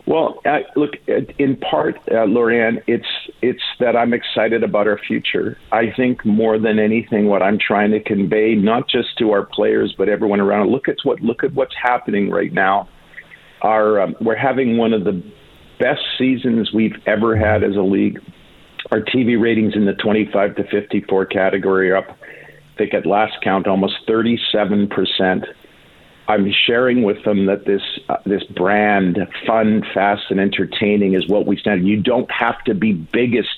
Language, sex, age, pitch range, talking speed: English, male, 50-69, 100-110 Hz, 180 wpm